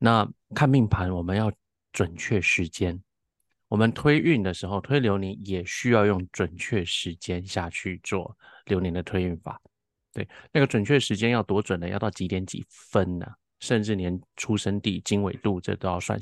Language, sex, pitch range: Chinese, male, 95-130 Hz